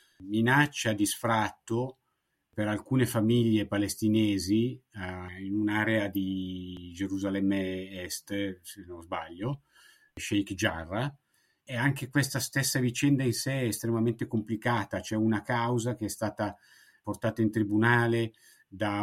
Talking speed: 120 wpm